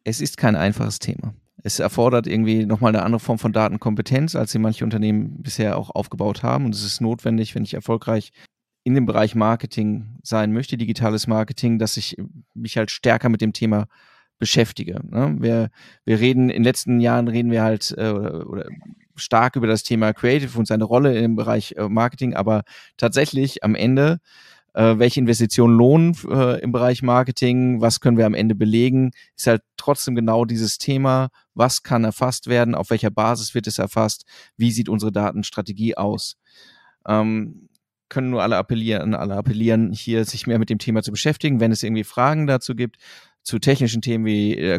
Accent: German